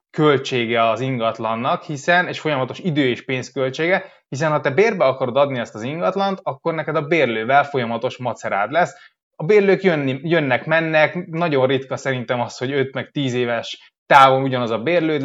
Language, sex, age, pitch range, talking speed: Hungarian, male, 20-39, 125-155 Hz, 165 wpm